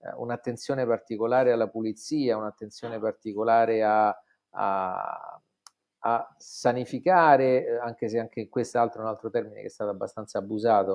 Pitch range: 110-135 Hz